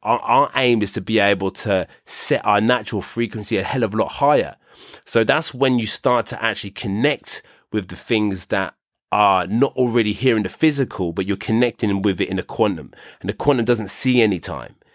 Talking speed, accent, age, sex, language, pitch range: 210 wpm, British, 30-49, male, English, 95-115 Hz